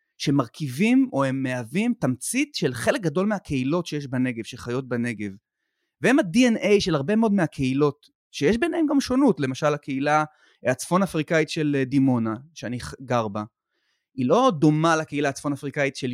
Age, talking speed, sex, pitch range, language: 30-49, 145 wpm, male, 130-200 Hz, Hebrew